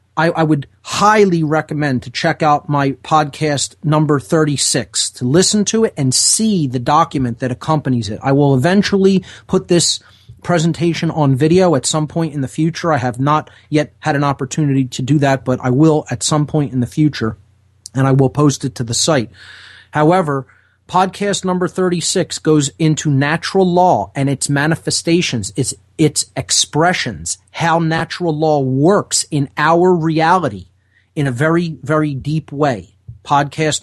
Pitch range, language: 125-160 Hz, English